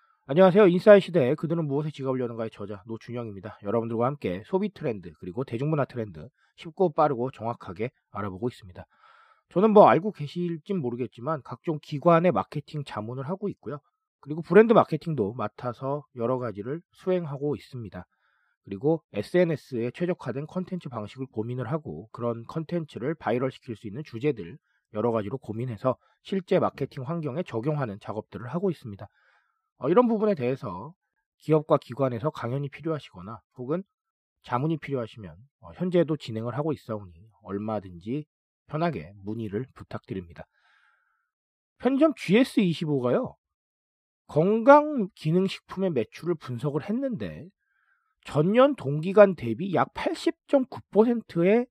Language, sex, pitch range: Korean, male, 115-180 Hz